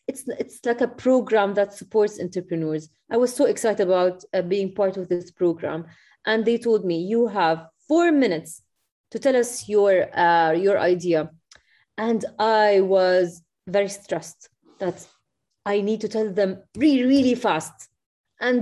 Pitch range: 175-230 Hz